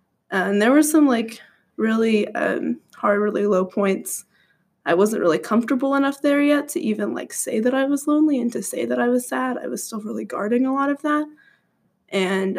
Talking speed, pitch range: 205 wpm, 195-235 Hz